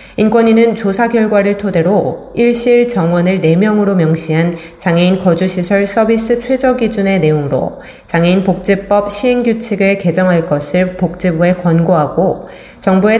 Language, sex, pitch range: Korean, female, 170-210 Hz